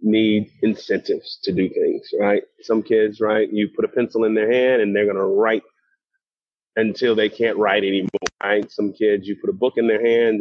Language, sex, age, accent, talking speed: English, male, 30-49, American, 210 wpm